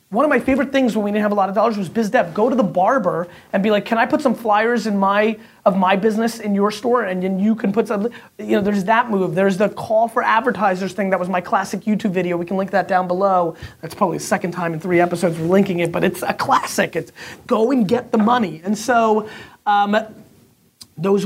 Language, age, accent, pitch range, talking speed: English, 30-49, American, 175-225 Hz, 255 wpm